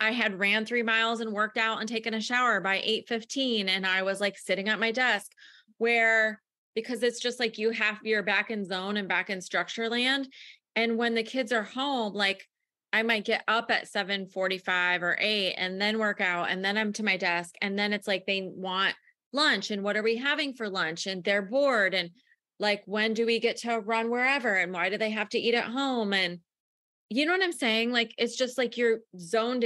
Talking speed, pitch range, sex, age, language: 225 wpm, 200-235 Hz, female, 20-39, English